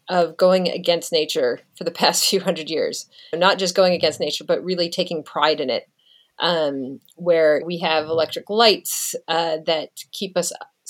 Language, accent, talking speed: English, American, 175 wpm